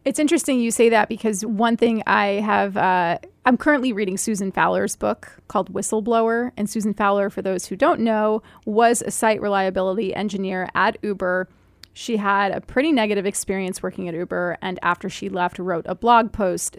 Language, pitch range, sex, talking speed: English, 190-230 Hz, female, 180 wpm